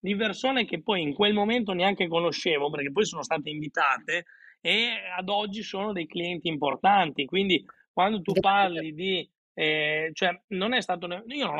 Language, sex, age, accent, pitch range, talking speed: Italian, male, 30-49, native, 160-200 Hz, 170 wpm